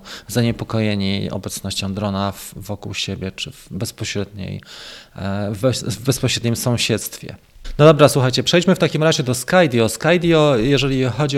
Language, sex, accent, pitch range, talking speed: Polish, male, native, 110-140 Hz, 115 wpm